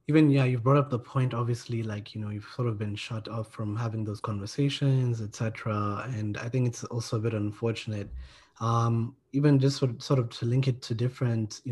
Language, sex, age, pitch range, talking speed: English, male, 20-39, 110-130 Hz, 220 wpm